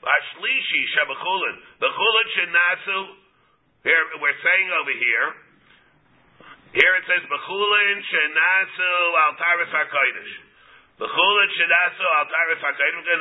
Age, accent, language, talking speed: 50-69, American, English, 75 wpm